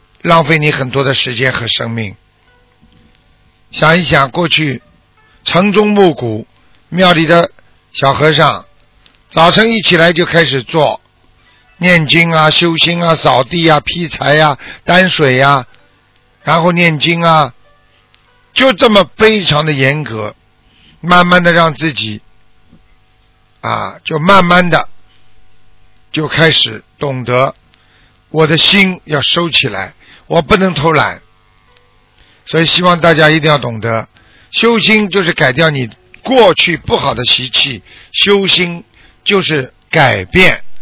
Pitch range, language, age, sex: 105-165 Hz, Chinese, 50-69, male